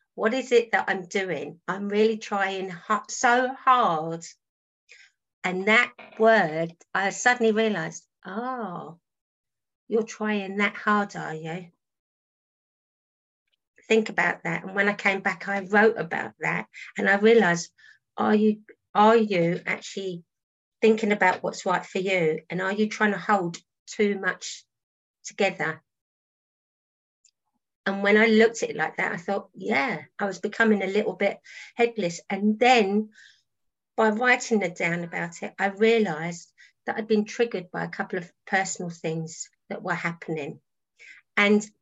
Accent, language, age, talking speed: British, English, 50-69, 140 wpm